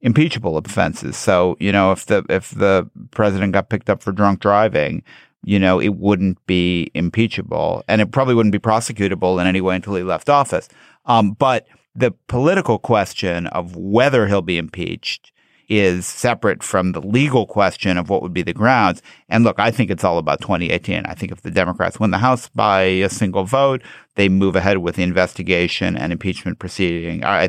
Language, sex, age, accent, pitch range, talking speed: English, male, 50-69, American, 90-110 Hz, 190 wpm